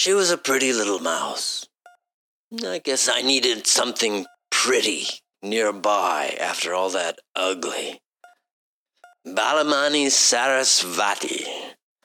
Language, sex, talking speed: English, male, 95 wpm